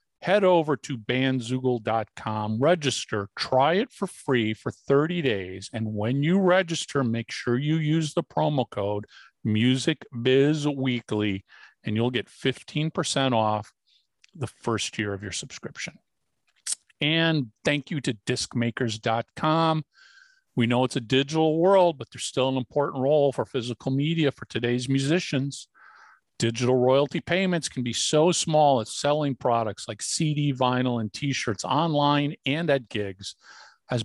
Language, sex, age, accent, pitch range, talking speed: English, male, 50-69, American, 120-150 Hz, 135 wpm